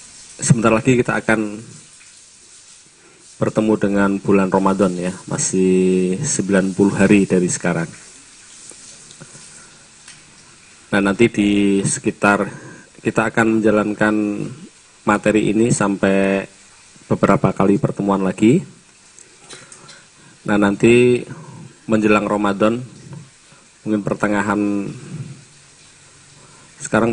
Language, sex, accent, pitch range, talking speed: Indonesian, male, native, 95-125 Hz, 75 wpm